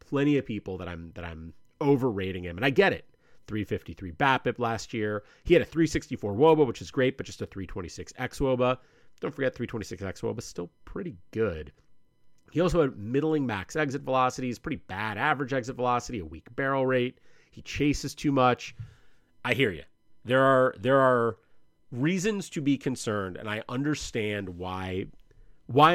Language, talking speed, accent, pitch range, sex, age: English, 175 wpm, American, 100-135 Hz, male, 30-49